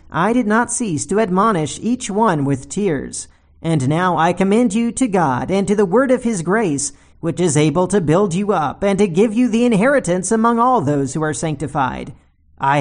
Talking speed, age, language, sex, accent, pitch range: 205 wpm, 40-59, English, male, American, 145-215 Hz